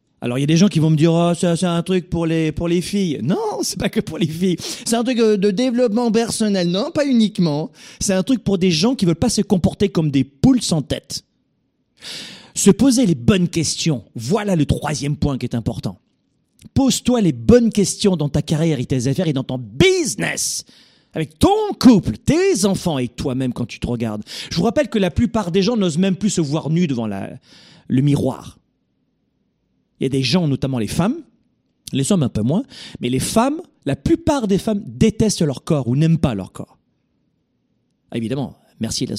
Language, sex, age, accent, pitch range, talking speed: French, male, 30-49, French, 130-205 Hz, 215 wpm